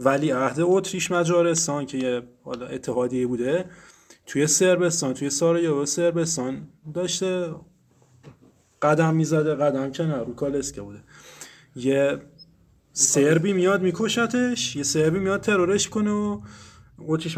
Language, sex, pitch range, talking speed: Persian, male, 140-185 Hz, 115 wpm